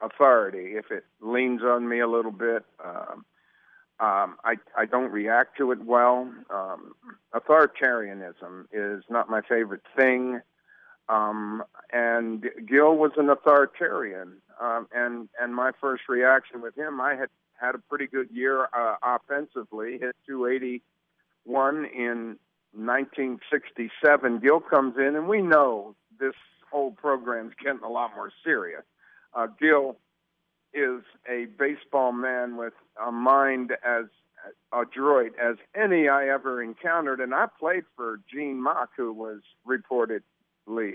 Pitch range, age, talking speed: 115-140 Hz, 50-69, 140 wpm